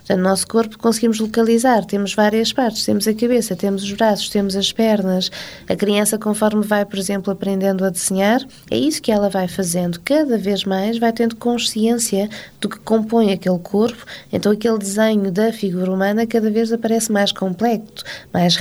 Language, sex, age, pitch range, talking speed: Portuguese, female, 20-39, 190-230 Hz, 180 wpm